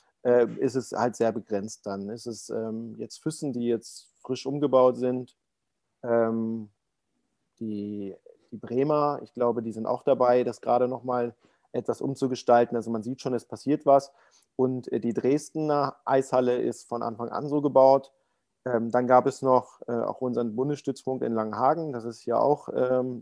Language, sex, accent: German, male, German